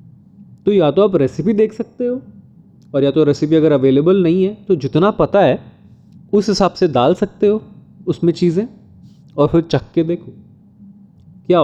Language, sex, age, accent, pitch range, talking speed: Hindi, male, 20-39, native, 135-195 Hz, 175 wpm